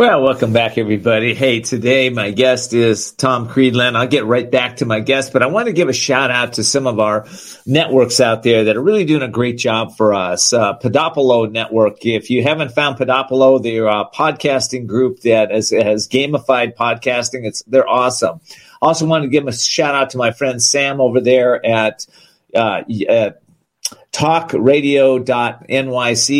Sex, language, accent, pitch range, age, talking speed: male, English, American, 120-140 Hz, 50-69, 175 wpm